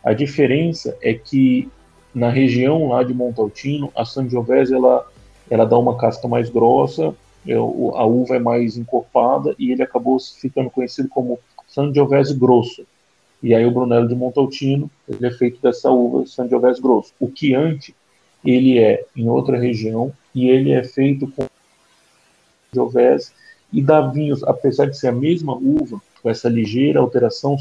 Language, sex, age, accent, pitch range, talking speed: Portuguese, male, 40-59, Brazilian, 120-140 Hz, 150 wpm